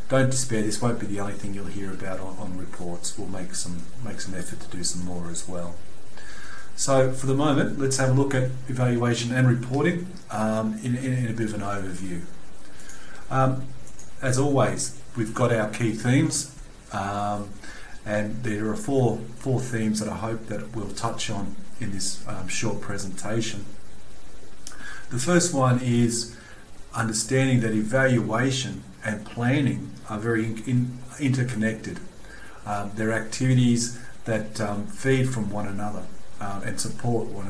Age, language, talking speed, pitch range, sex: 40-59, English, 160 wpm, 100-125 Hz, male